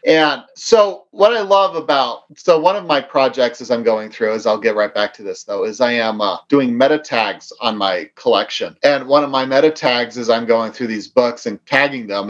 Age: 40-59